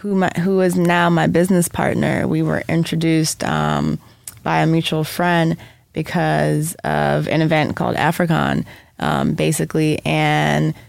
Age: 20-39